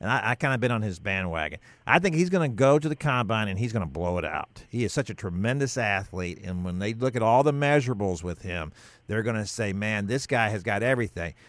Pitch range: 105-135 Hz